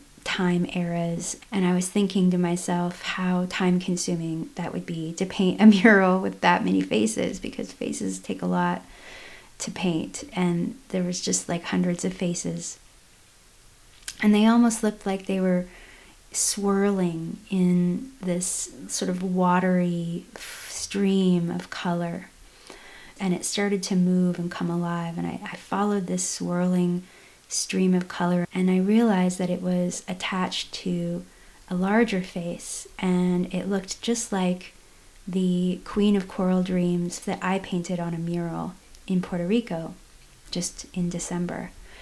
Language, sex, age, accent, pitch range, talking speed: English, female, 30-49, American, 175-190 Hz, 145 wpm